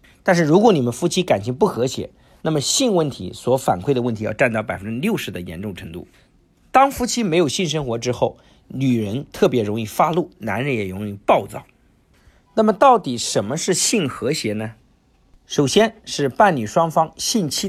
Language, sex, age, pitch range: Chinese, male, 50-69, 110-185 Hz